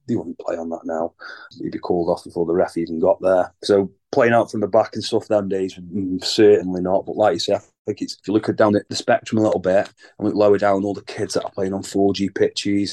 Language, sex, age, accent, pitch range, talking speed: English, male, 30-49, British, 95-105 Hz, 280 wpm